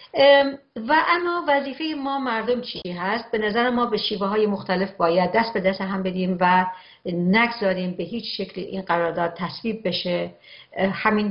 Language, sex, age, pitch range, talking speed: Persian, female, 50-69, 180-225 Hz, 160 wpm